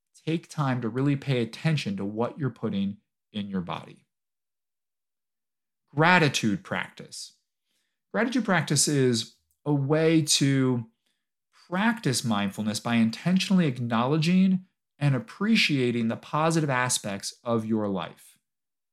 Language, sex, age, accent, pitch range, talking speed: English, male, 40-59, American, 115-160 Hz, 110 wpm